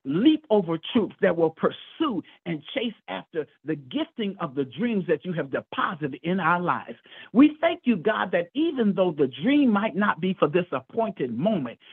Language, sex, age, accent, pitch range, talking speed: English, male, 50-69, American, 165-250 Hz, 185 wpm